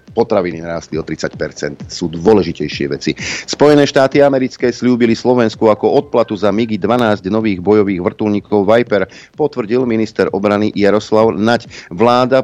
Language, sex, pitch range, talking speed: Slovak, male, 95-120 Hz, 130 wpm